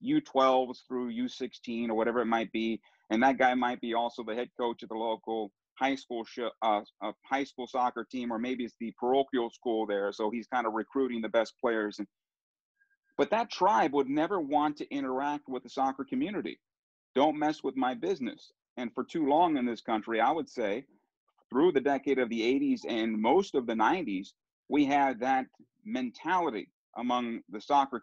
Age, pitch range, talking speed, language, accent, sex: 40-59, 115-165 Hz, 195 wpm, English, American, male